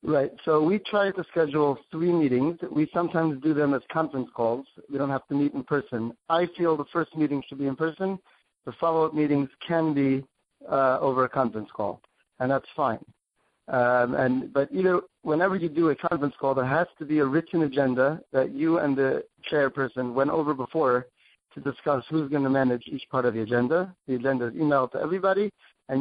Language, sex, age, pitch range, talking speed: English, male, 50-69, 130-160 Hz, 200 wpm